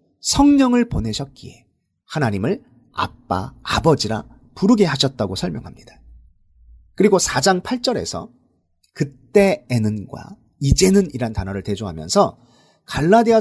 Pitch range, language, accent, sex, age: 100-165 Hz, Korean, native, male, 40-59